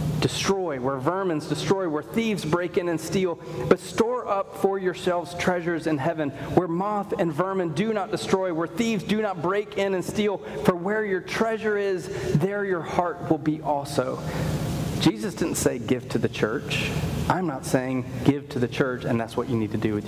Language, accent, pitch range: English, American, 145-180 Hz